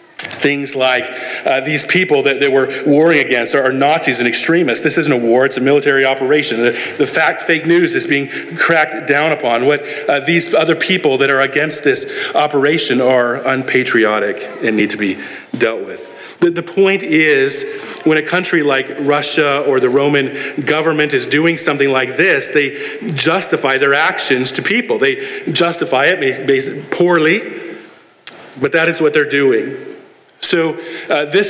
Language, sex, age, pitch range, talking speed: English, male, 40-59, 140-200 Hz, 170 wpm